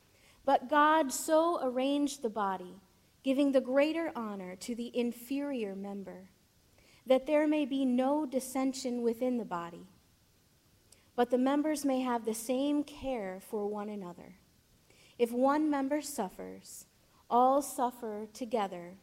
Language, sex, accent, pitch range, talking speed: English, female, American, 230-280 Hz, 130 wpm